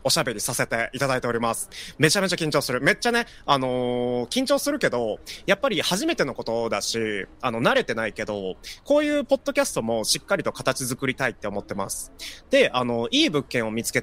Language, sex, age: Japanese, male, 30-49